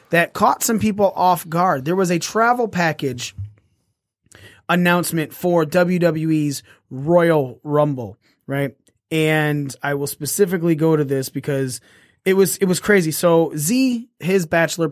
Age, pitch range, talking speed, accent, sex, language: 30-49, 140-175 Hz, 135 wpm, American, male, English